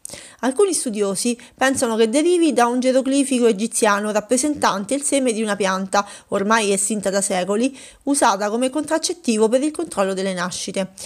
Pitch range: 200-265 Hz